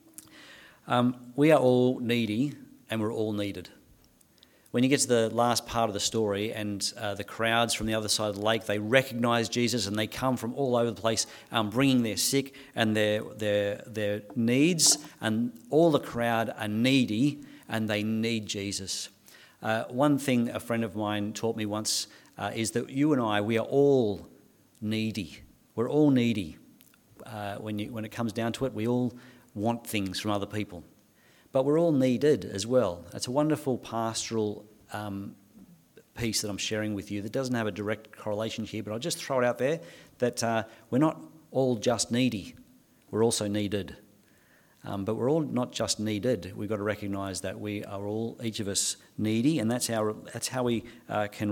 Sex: male